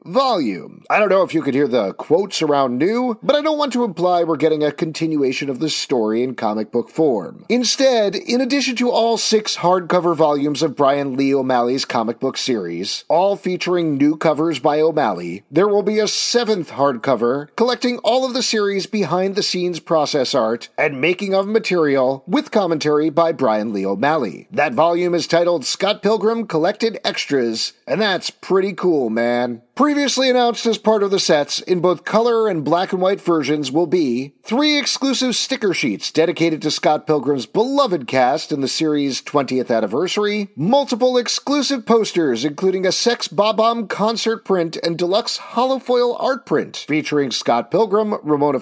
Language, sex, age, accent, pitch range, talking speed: English, male, 40-59, American, 150-225 Hz, 170 wpm